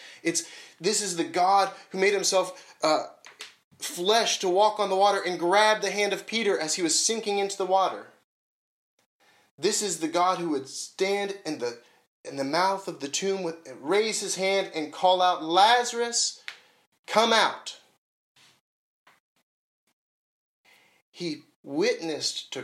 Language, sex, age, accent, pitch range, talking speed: English, male, 30-49, American, 165-205 Hz, 150 wpm